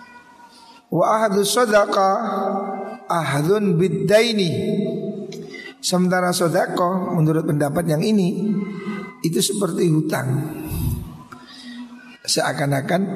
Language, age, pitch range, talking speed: Indonesian, 50-69, 165-205 Hz, 65 wpm